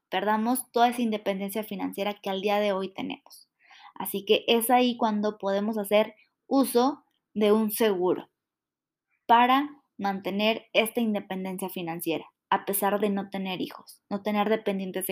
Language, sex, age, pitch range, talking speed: Spanish, female, 20-39, 200-245 Hz, 145 wpm